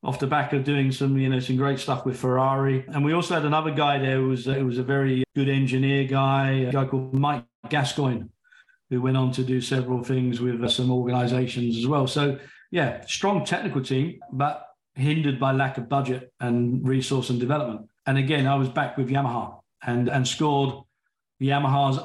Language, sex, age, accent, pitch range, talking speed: English, male, 40-59, British, 130-145 Hz, 200 wpm